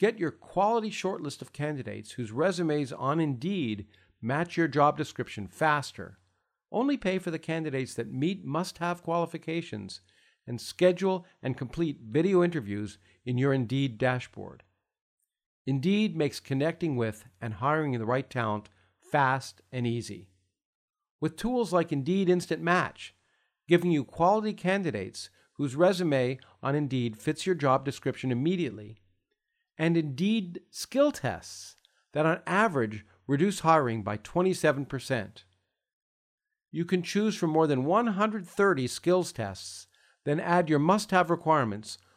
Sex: male